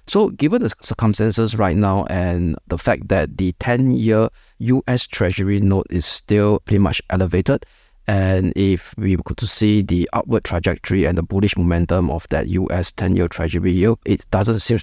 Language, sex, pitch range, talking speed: English, male, 90-105 Hz, 175 wpm